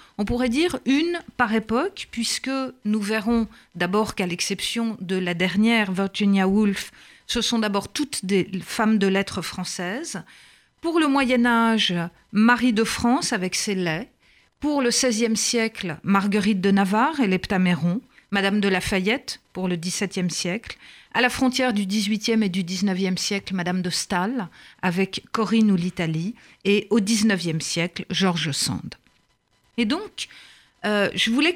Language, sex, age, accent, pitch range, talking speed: French, female, 50-69, French, 190-245 Hz, 150 wpm